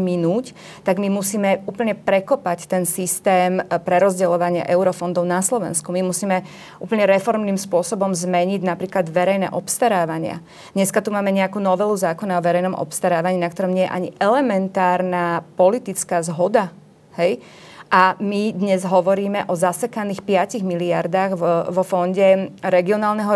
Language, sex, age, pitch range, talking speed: Slovak, female, 30-49, 180-200 Hz, 130 wpm